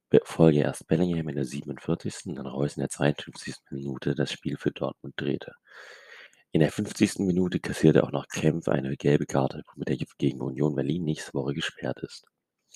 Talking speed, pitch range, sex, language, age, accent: 175 wpm, 70-80 Hz, male, German, 30-49, German